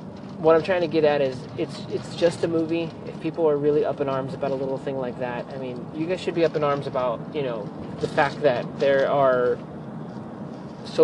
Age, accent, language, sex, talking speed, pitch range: 30-49, American, English, male, 235 wpm, 135-160 Hz